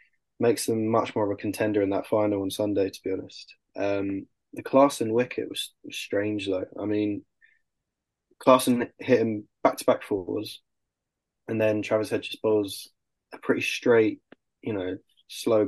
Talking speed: 160 wpm